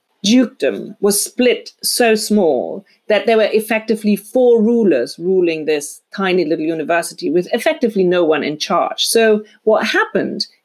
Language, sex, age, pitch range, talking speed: English, female, 40-59, 175-235 Hz, 140 wpm